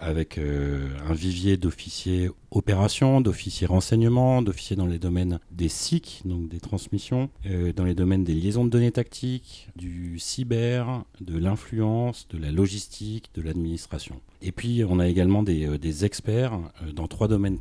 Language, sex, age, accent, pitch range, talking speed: French, male, 40-59, French, 85-110 Hz, 165 wpm